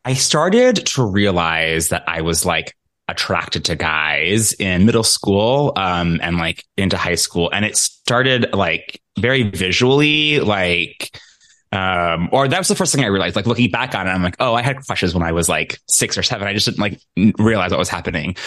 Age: 20-39